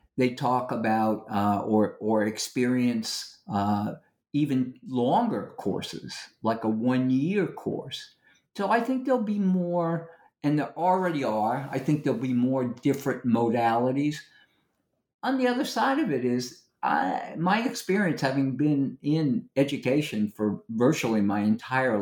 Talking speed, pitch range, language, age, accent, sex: 135 wpm, 115-170 Hz, English, 50-69, American, male